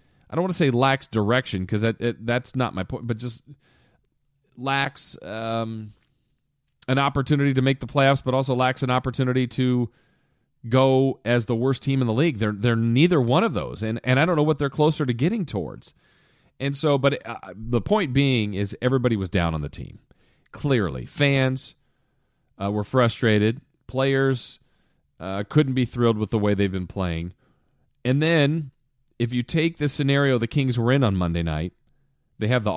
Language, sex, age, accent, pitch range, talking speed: English, male, 40-59, American, 110-140 Hz, 190 wpm